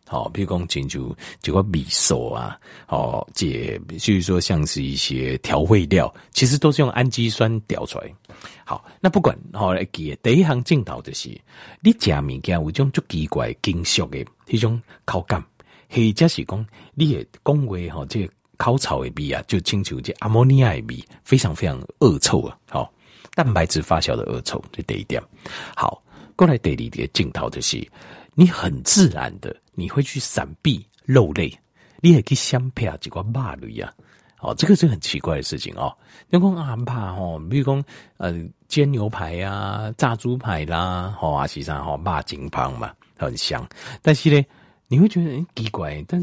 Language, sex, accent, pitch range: Chinese, male, native, 90-145 Hz